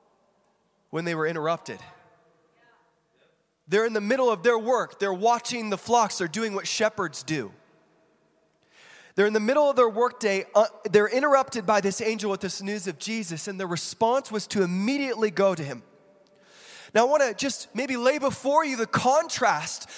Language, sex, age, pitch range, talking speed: English, male, 20-39, 190-235 Hz, 175 wpm